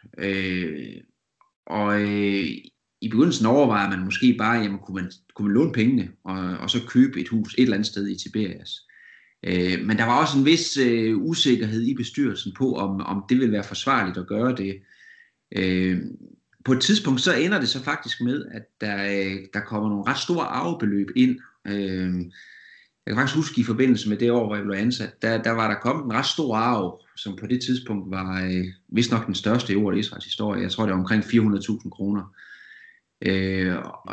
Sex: male